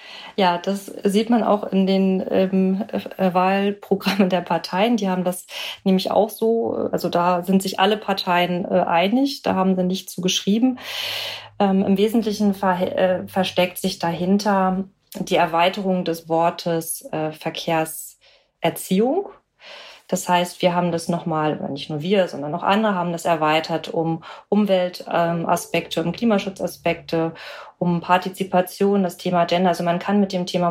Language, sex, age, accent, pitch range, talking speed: German, female, 30-49, German, 170-205 Hz, 145 wpm